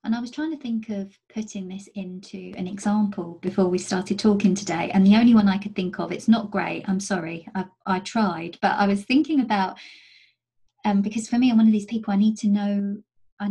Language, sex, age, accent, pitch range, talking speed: English, female, 30-49, British, 190-220 Hz, 230 wpm